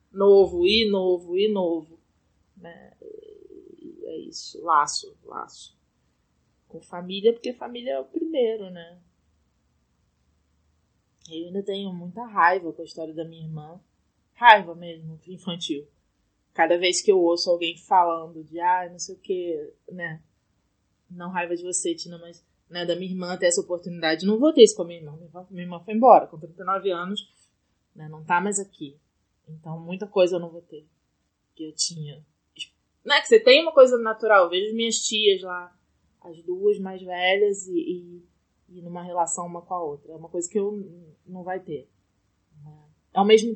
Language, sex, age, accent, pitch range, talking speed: Portuguese, female, 20-39, Brazilian, 160-210 Hz, 175 wpm